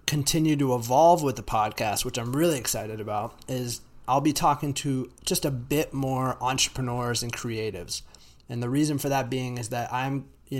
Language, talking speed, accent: English, 185 wpm, American